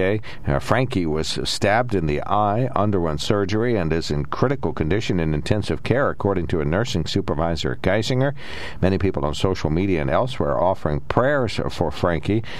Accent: American